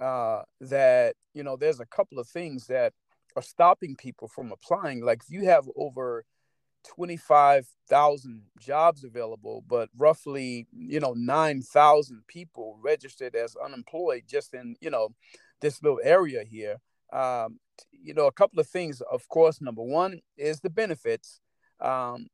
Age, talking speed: 40-59, 150 wpm